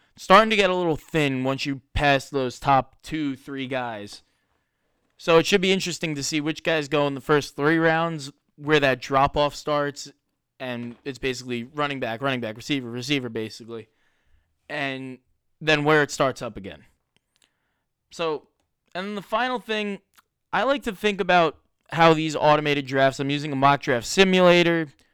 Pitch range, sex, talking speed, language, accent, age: 130-160 Hz, male, 165 wpm, English, American, 20-39